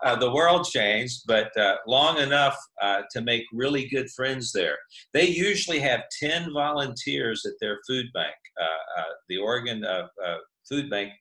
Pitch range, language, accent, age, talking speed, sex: 110-140 Hz, English, American, 50-69, 170 wpm, male